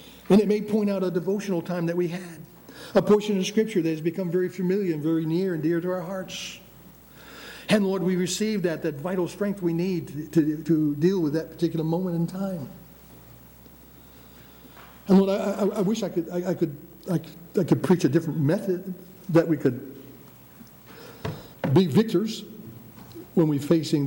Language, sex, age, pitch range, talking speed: English, male, 60-79, 135-180 Hz, 185 wpm